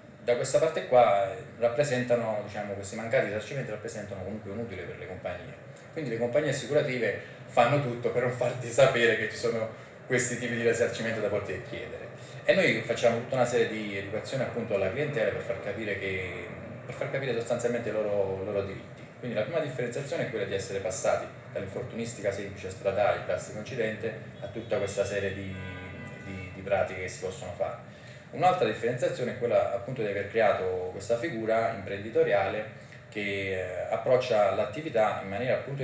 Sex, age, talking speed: male, 30-49, 170 wpm